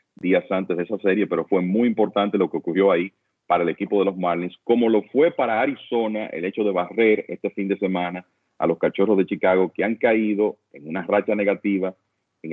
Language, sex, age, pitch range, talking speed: Spanish, male, 40-59, 95-110 Hz, 215 wpm